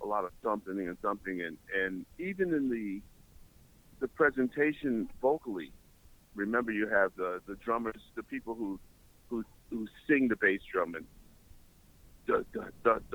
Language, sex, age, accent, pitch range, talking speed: English, male, 50-69, American, 100-130 Hz, 135 wpm